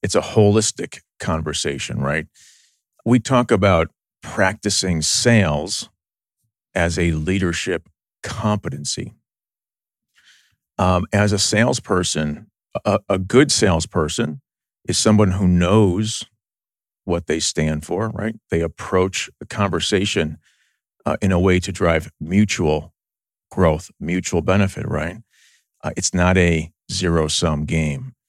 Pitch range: 85-110 Hz